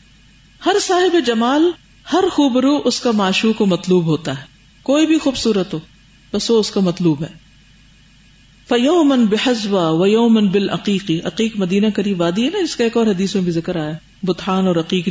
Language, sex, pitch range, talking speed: Urdu, female, 180-230 Hz, 185 wpm